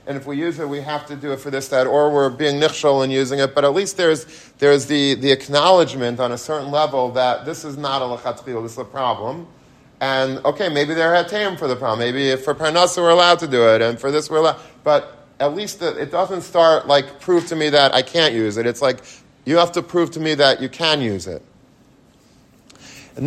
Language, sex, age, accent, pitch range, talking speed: English, male, 40-59, American, 125-150 Hz, 240 wpm